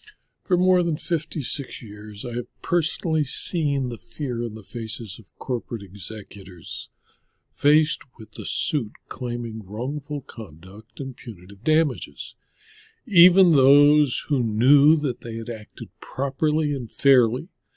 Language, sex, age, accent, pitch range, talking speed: English, male, 60-79, American, 115-155 Hz, 130 wpm